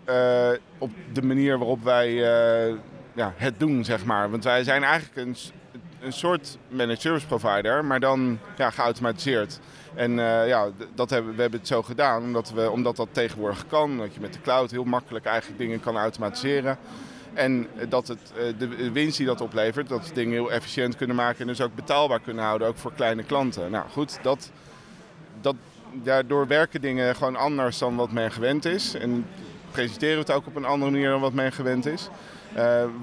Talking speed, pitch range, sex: 195 wpm, 120-140 Hz, male